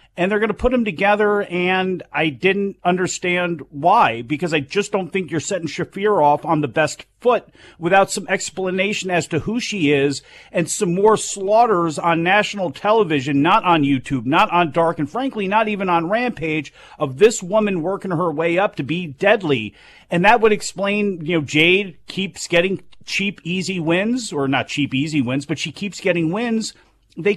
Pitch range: 155-200 Hz